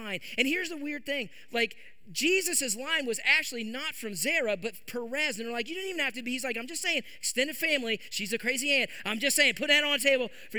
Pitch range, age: 215-290 Hz, 30-49